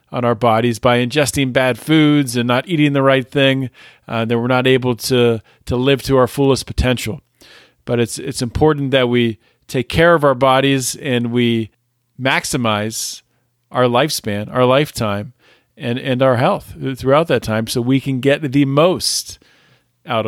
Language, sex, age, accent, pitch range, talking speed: English, male, 40-59, American, 115-135 Hz, 170 wpm